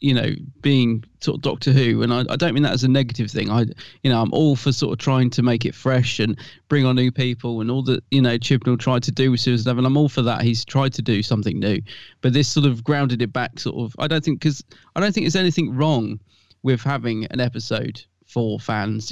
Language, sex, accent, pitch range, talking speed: English, male, British, 120-150 Hz, 255 wpm